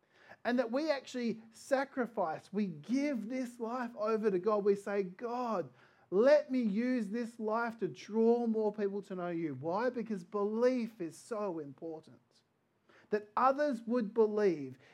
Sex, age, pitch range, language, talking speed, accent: male, 30-49, 165-230 Hz, English, 150 wpm, Australian